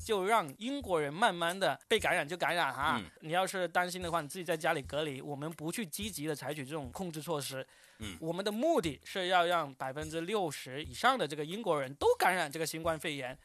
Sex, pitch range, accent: male, 160-230 Hz, native